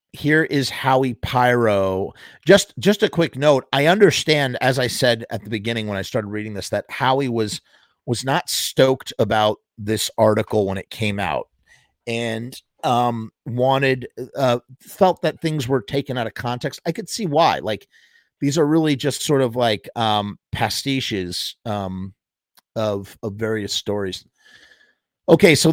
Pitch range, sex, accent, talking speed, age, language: 110-145 Hz, male, American, 160 wpm, 30-49, English